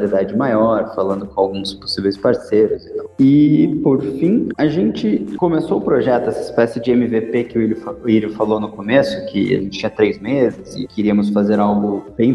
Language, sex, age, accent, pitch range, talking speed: Portuguese, male, 20-39, Brazilian, 100-120 Hz, 180 wpm